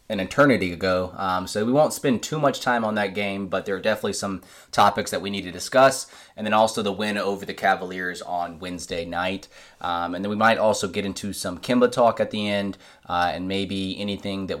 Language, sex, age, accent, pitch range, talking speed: English, male, 20-39, American, 90-105 Hz, 225 wpm